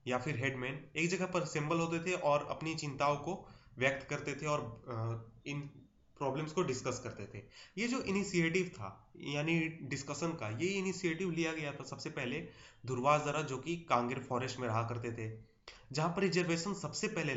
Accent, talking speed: Indian, 175 wpm